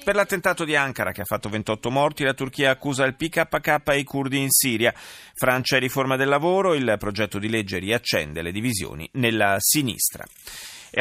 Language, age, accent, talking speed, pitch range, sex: Italian, 30-49, native, 185 wpm, 110-145 Hz, male